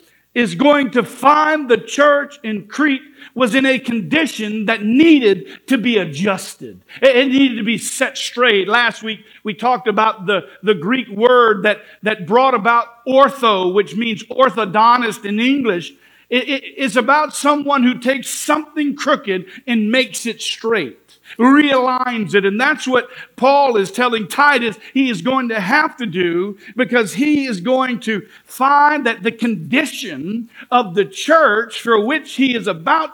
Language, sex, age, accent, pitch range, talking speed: English, male, 50-69, American, 205-265 Hz, 160 wpm